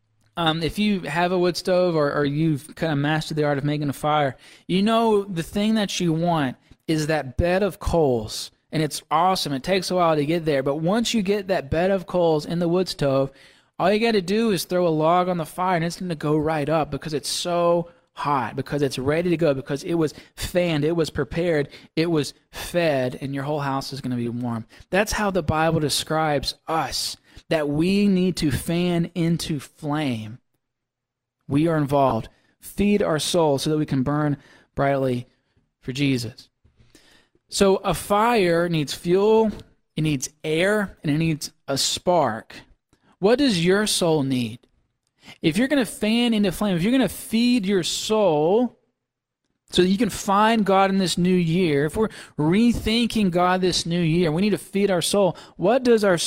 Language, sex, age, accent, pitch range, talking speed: English, male, 20-39, American, 145-190 Hz, 195 wpm